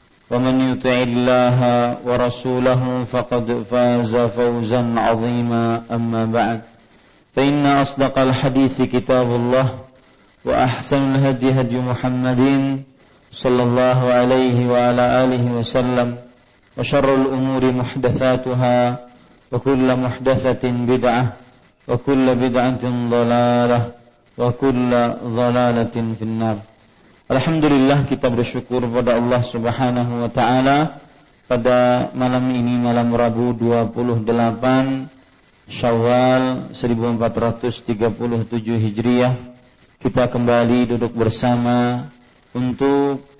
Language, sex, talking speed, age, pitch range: English, male, 85 wpm, 40-59, 120-130 Hz